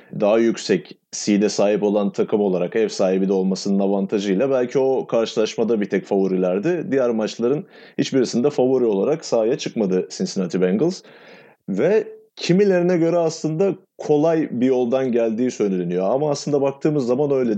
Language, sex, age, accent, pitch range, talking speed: Turkish, male, 30-49, native, 110-145 Hz, 140 wpm